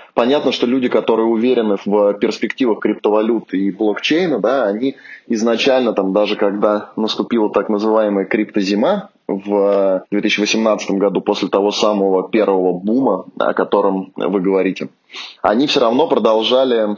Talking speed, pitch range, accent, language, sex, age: 125 wpm, 100-120 Hz, native, Russian, male, 20-39